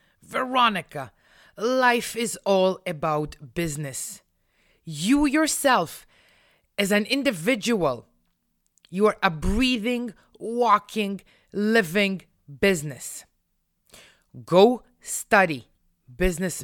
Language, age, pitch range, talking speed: English, 30-49, 145-205 Hz, 75 wpm